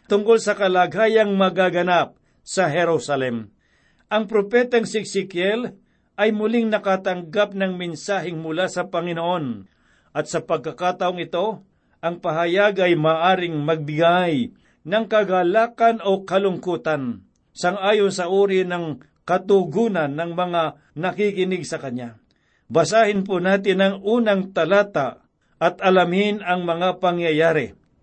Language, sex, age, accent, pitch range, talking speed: Filipino, male, 50-69, native, 170-200 Hz, 110 wpm